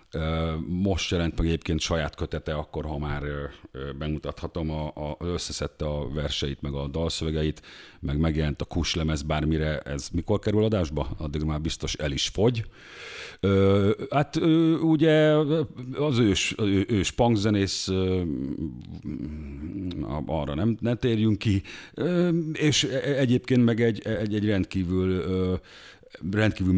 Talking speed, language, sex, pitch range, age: 125 wpm, Hungarian, male, 80-110 Hz, 50-69